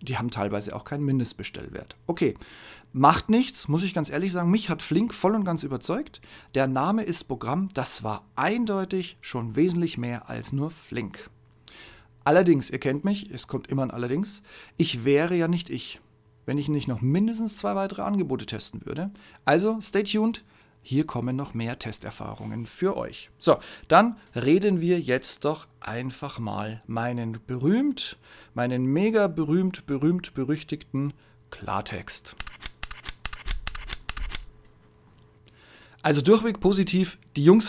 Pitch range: 130-185 Hz